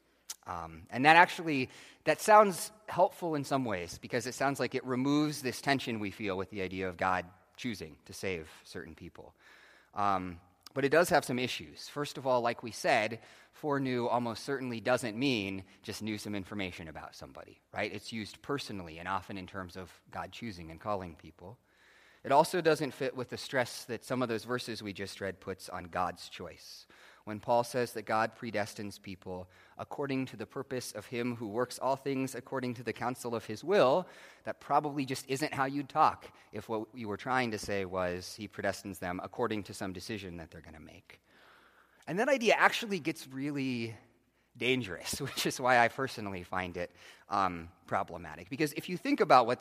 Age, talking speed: 30-49, 195 wpm